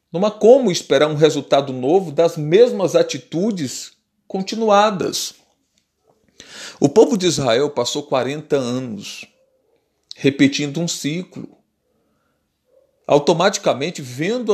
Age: 40-59